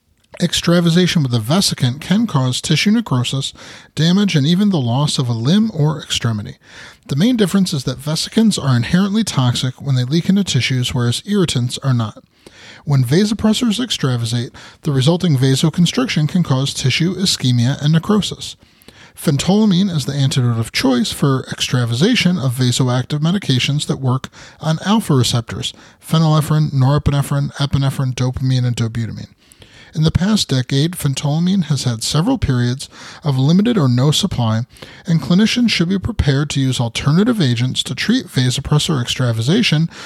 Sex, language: male, English